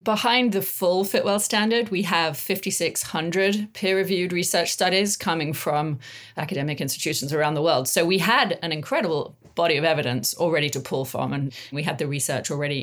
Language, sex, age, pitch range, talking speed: English, female, 40-59, 145-180 Hz, 170 wpm